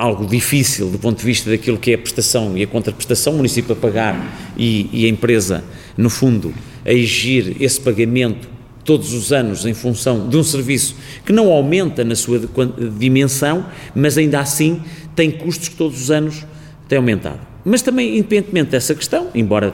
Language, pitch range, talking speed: Portuguese, 115-145 Hz, 180 wpm